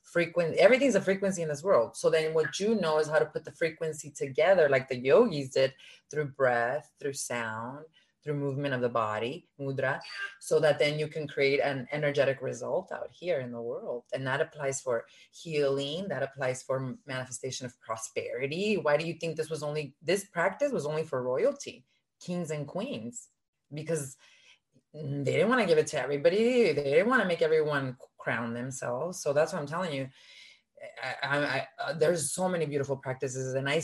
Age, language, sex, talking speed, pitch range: 30-49, English, female, 195 wpm, 140-195 Hz